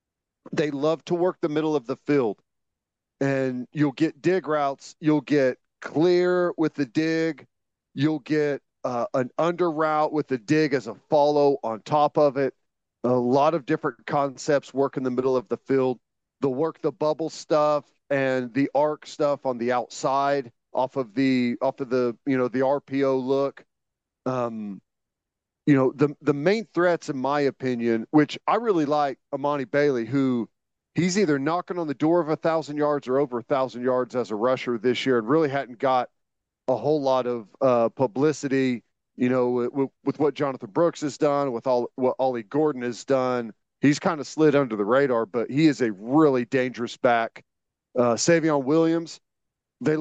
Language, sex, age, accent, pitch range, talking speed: English, male, 40-59, American, 125-155 Hz, 185 wpm